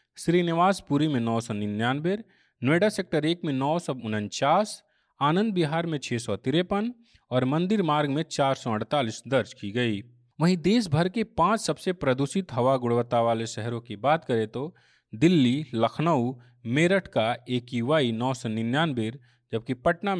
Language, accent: Hindi, native